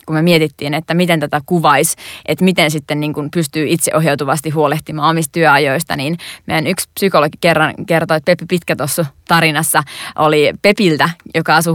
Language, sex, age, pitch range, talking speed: Finnish, female, 20-39, 155-195 Hz, 160 wpm